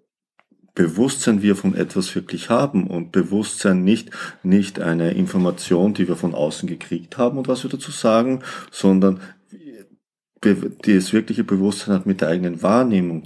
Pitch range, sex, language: 95-120 Hz, male, German